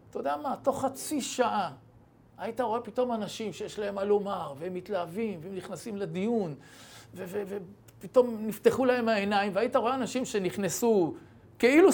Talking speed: 150 wpm